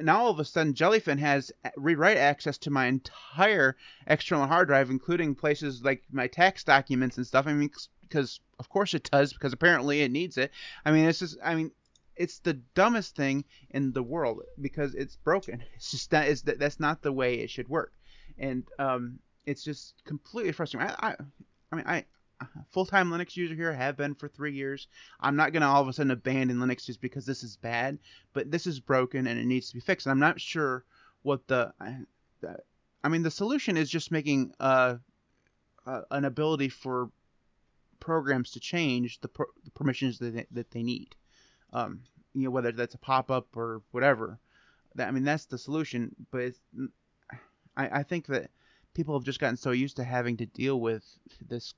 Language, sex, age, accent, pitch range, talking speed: English, male, 30-49, American, 125-150 Hz, 200 wpm